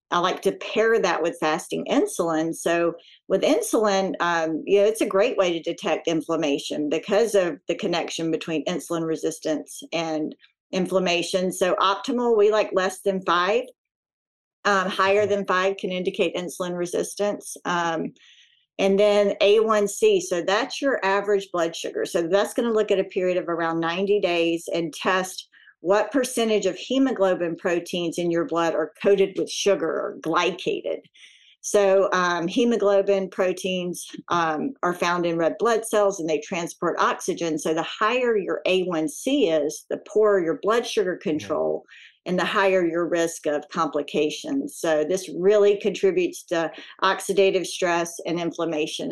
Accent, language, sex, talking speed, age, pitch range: American, English, female, 155 wpm, 50-69, 170-205 Hz